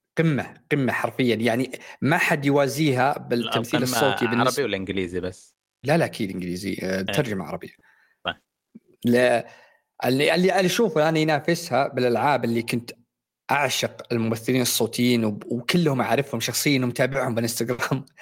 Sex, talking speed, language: male, 115 wpm, Arabic